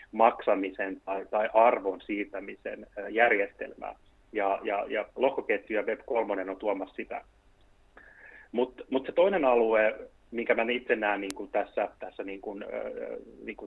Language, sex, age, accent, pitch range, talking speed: English, male, 30-49, Finnish, 100-125 Hz, 125 wpm